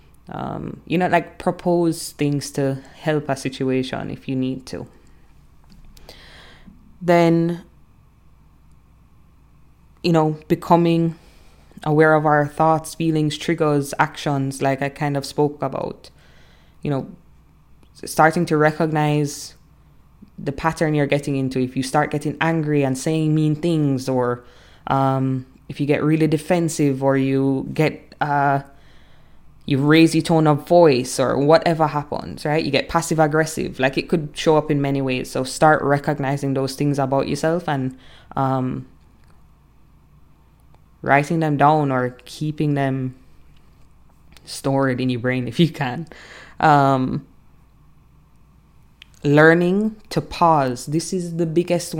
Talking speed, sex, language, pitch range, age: 130 wpm, female, English, 135-165 Hz, 20-39